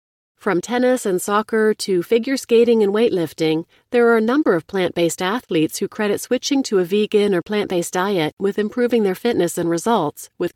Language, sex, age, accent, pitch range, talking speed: English, female, 40-59, American, 170-225 Hz, 180 wpm